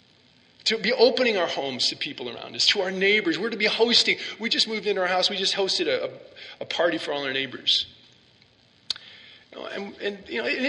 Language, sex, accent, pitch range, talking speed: English, male, American, 180-235 Hz, 225 wpm